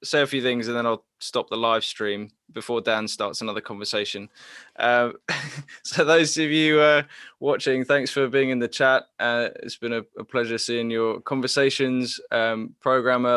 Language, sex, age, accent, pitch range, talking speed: English, male, 10-29, British, 115-140 Hz, 180 wpm